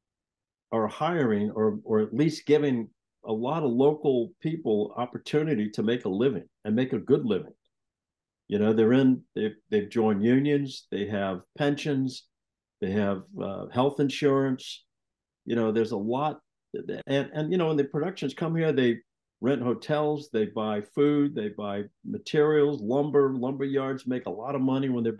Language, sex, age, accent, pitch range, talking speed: English, male, 50-69, American, 110-145 Hz, 170 wpm